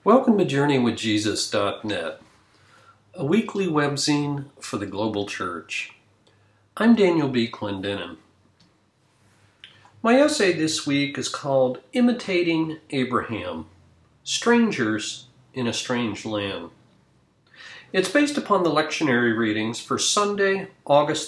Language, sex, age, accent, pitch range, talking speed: English, male, 50-69, American, 115-180 Hz, 100 wpm